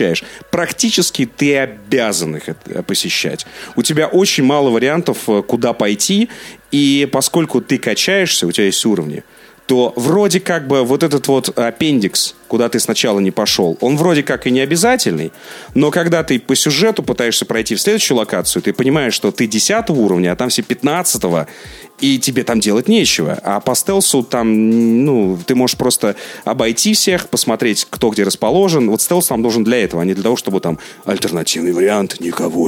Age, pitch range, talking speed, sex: 30-49, 110-155 Hz, 170 wpm, male